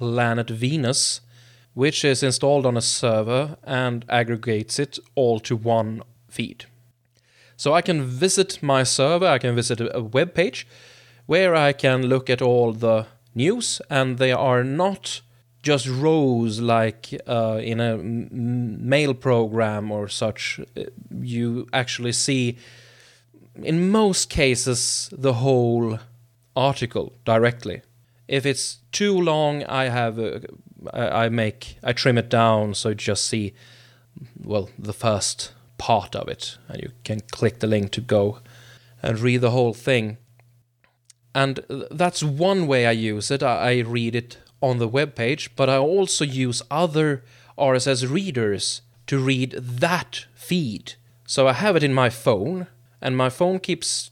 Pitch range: 120-135 Hz